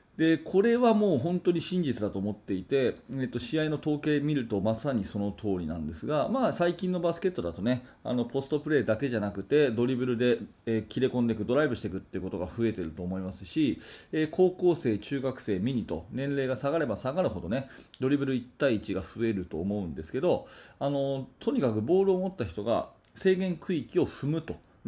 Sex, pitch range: male, 115-160 Hz